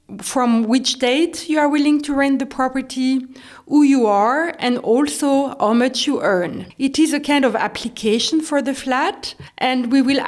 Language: English